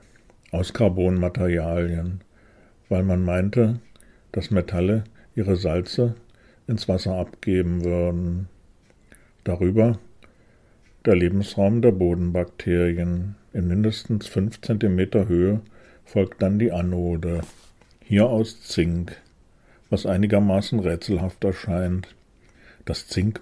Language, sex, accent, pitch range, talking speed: German, male, German, 90-110 Hz, 90 wpm